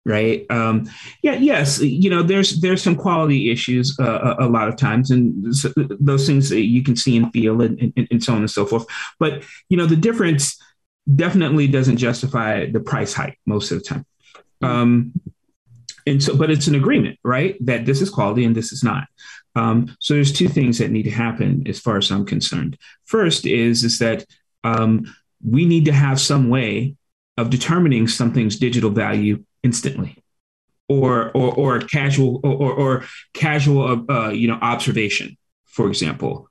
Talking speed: 180 wpm